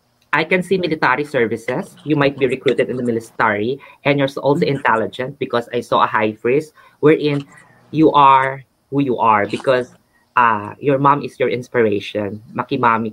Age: 20-39